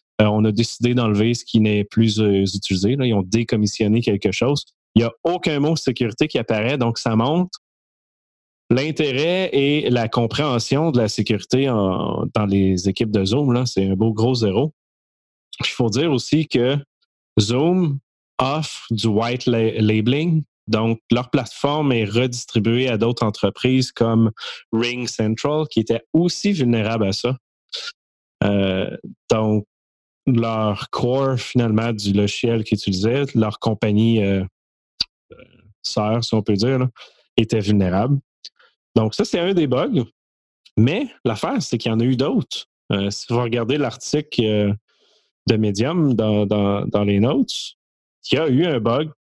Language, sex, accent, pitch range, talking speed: French, male, Canadian, 105-130 Hz, 150 wpm